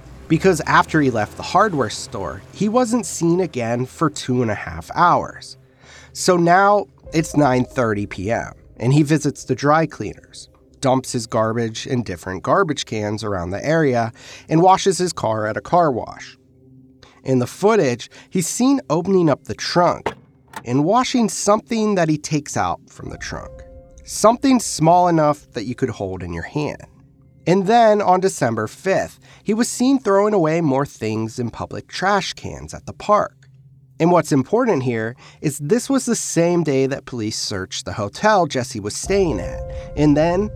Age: 30-49